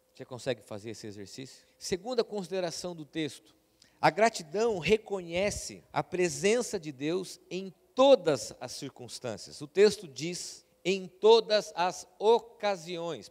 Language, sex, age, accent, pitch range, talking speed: Portuguese, male, 50-69, Brazilian, 130-185 Hz, 120 wpm